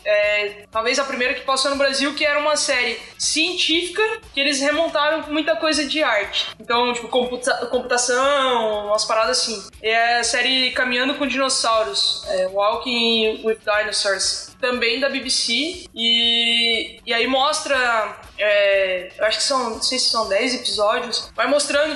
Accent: Brazilian